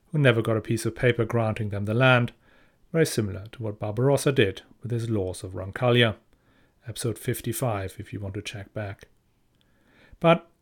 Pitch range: 110-140 Hz